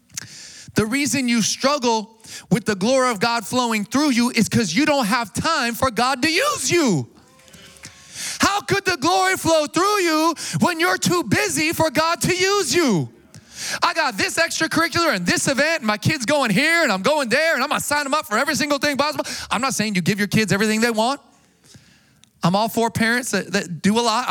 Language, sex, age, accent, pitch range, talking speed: English, male, 20-39, American, 185-265 Hz, 210 wpm